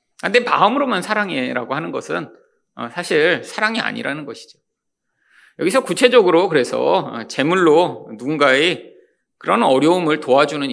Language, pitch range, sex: Korean, 175-280 Hz, male